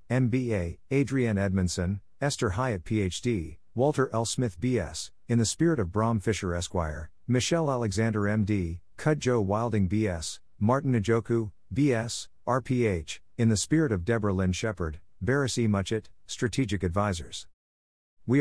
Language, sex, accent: English, male, American